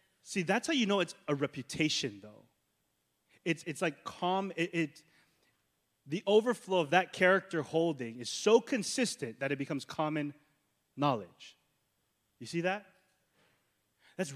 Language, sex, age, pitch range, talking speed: English, male, 20-39, 135-185 Hz, 140 wpm